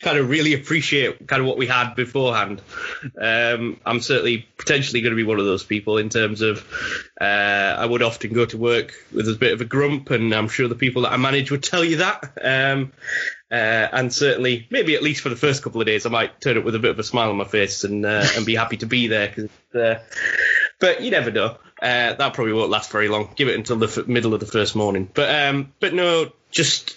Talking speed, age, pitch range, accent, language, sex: 245 wpm, 10-29, 110-140 Hz, British, English, male